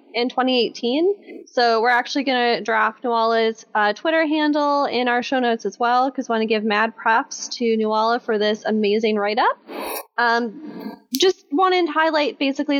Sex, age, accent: female, 10-29, American